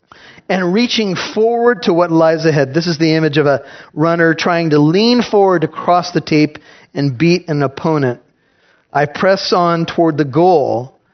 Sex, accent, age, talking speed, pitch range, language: male, American, 40-59, 170 wpm, 150-175 Hz, English